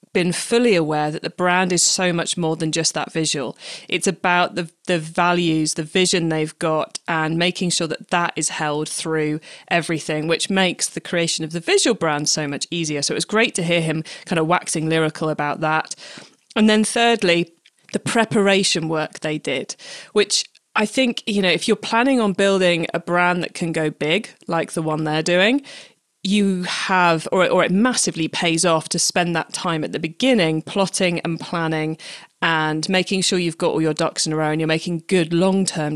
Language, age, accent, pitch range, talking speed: English, 20-39, British, 160-190 Hz, 200 wpm